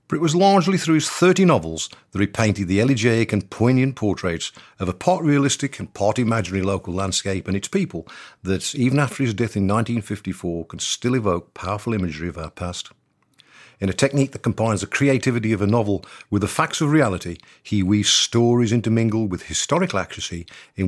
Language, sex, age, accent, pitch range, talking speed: English, male, 50-69, British, 95-130 Hz, 190 wpm